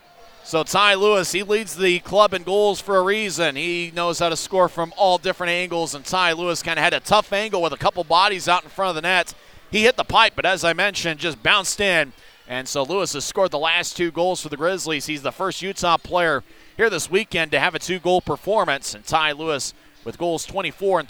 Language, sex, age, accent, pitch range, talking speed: English, male, 30-49, American, 165-225 Hz, 235 wpm